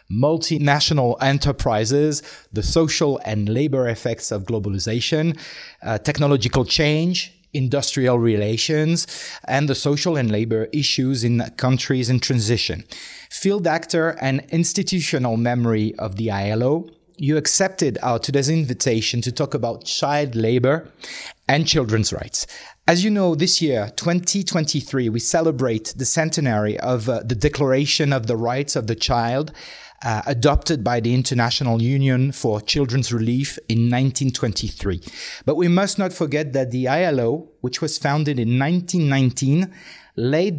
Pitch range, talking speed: 120-155 Hz, 135 wpm